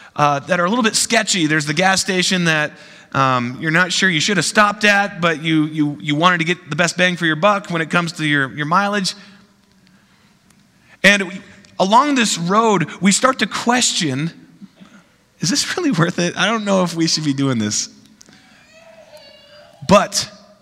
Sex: male